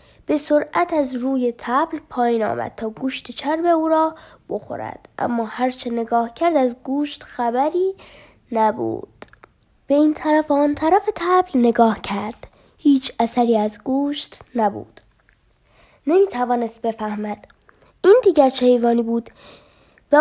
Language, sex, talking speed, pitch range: Persian, female, 130 wpm, 240-320 Hz